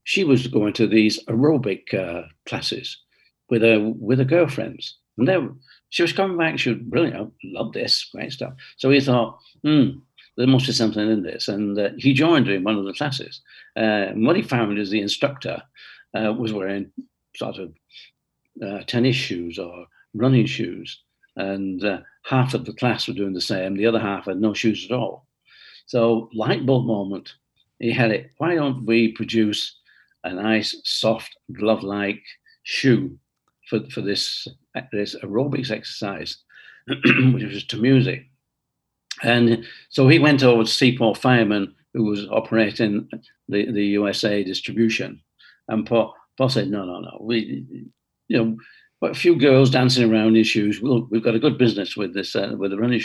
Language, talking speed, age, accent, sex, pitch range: English, 175 wpm, 60-79, British, male, 105-130 Hz